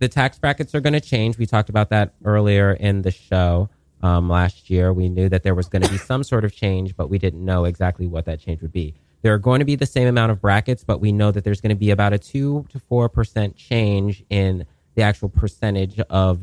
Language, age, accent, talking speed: English, 30-49, American, 245 wpm